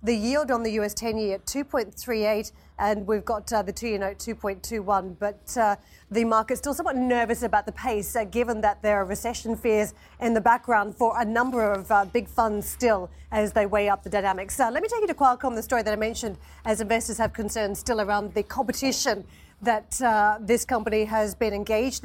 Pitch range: 205-235 Hz